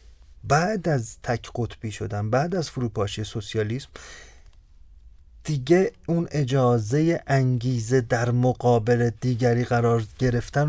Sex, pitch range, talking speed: male, 110-145 Hz, 100 wpm